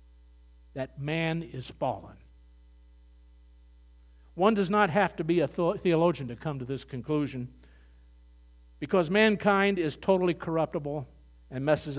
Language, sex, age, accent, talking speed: English, male, 50-69, American, 120 wpm